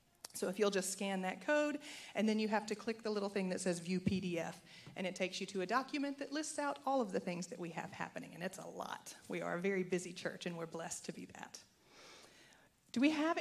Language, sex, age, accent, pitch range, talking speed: English, female, 40-59, American, 190-260 Hz, 255 wpm